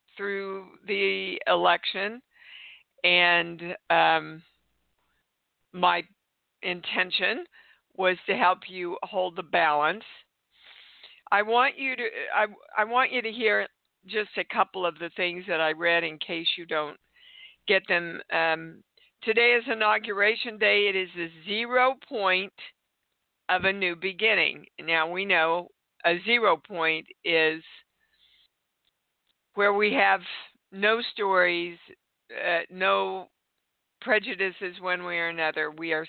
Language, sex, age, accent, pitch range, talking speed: English, female, 50-69, American, 170-215 Hz, 125 wpm